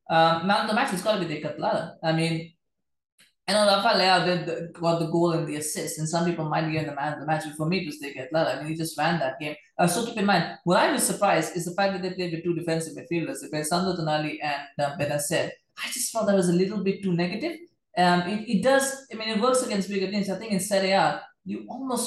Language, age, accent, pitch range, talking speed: English, 20-39, Indian, 150-185 Hz, 275 wpm